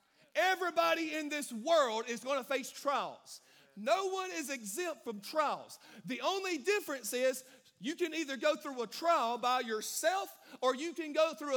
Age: 40-59